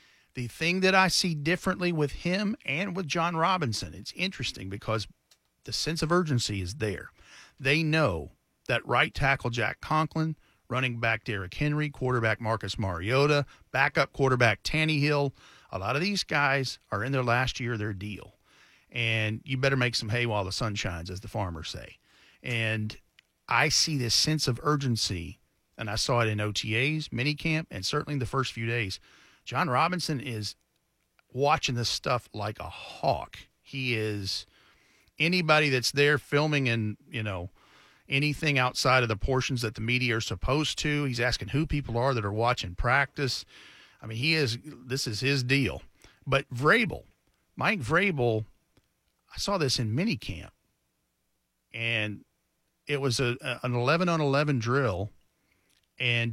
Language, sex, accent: English, male, American